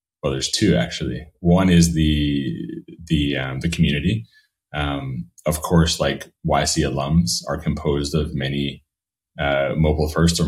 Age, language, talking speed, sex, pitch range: 30-49, English, 145 wpm, male, 70-85 Hz